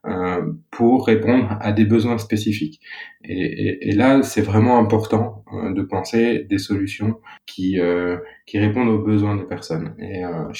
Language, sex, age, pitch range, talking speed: French, male, 20-39, 95-110 Hz, 155 wpm